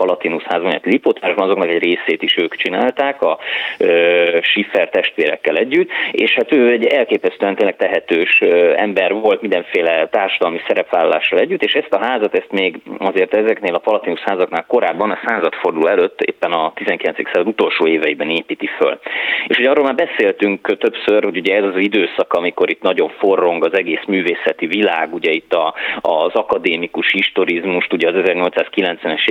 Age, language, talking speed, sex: 30-49, Hungarian, 155 wpm, male